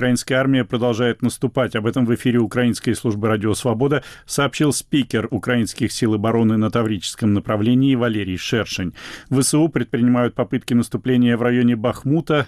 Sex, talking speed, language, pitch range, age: male, 140 wpm, Russian, 110-130 Hz, 40-59